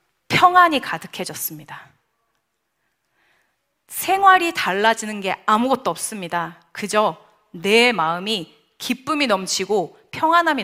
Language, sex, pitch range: Korean, female, 190-320 Hz